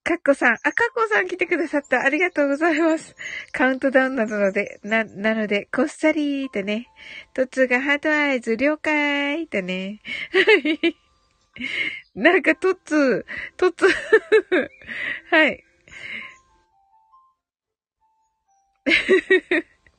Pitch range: 240-350 Hz